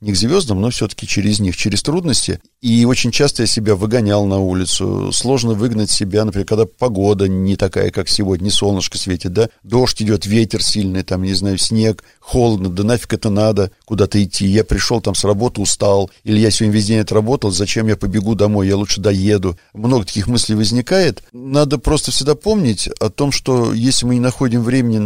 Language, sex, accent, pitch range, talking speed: Russian, male, native, 100-125 Hz, 190 wpm